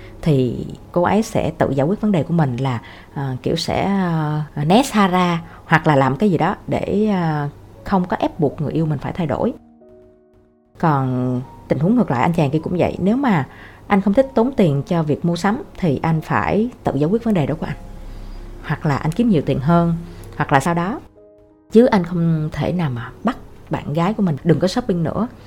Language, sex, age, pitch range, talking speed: Vietnamese, female, 20-39, 130-190 Hz, 215 wpm